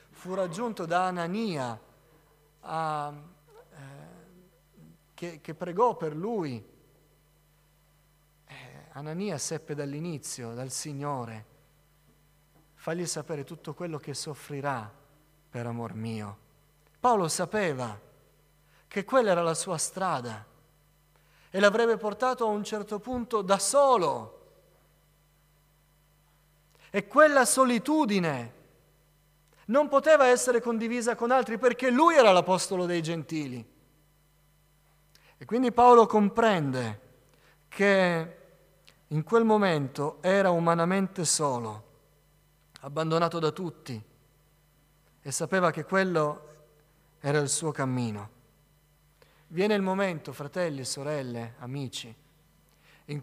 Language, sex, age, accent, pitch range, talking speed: Italian, male, 40-59, native, 145-185 Hz, 95 wpm